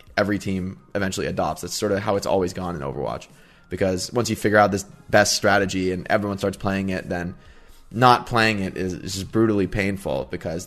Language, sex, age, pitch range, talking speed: English, male, 20-39, 95-110 Hz, 200 wpm